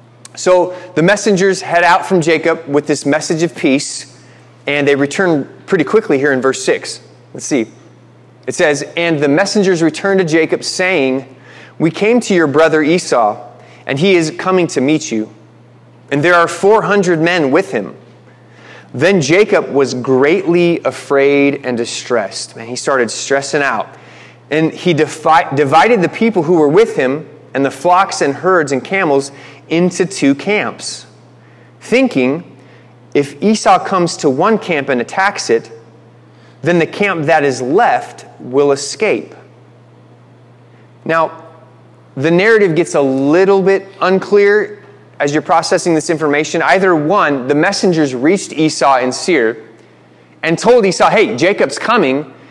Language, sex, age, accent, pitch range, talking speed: English, male, 30-49, American, 135-180 Hz, 145 wpm